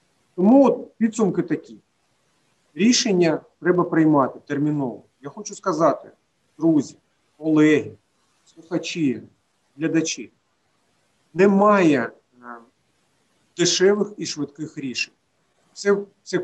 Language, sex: Ukrainian, male